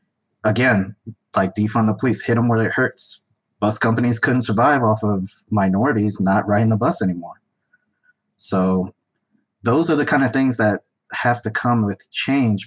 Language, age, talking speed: English, 20-39, 165 wpm